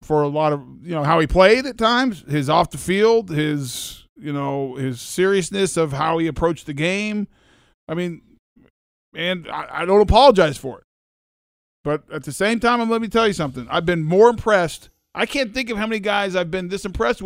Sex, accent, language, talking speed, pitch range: male, American, English, 210 wpm, 165-230 Hz